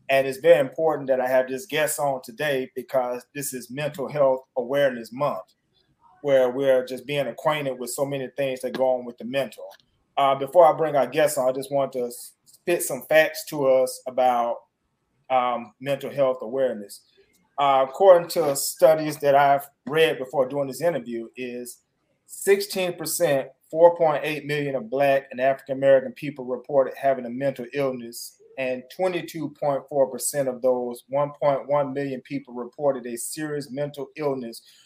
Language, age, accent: English, 30-49, American